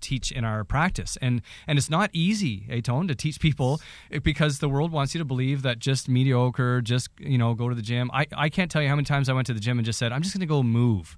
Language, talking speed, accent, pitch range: English, 280 wpm, American, 120-150 Hz